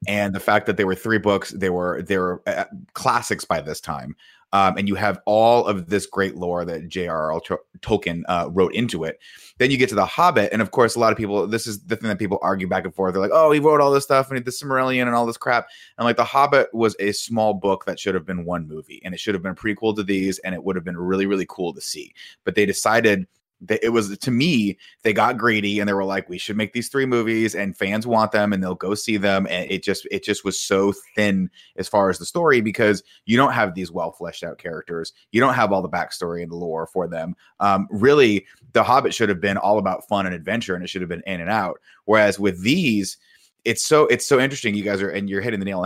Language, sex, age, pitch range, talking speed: English, male, 20-39, 95-110 Hz, 265 wpm